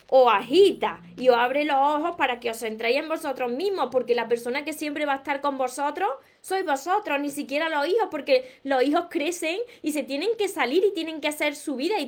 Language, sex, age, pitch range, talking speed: Spanish, female, 20-39, 240-295 Hz, 230 wpm